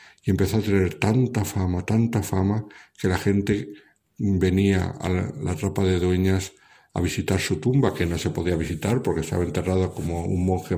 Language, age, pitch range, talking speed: Spanish, 60-79, 90-100 Hz, 185 wpm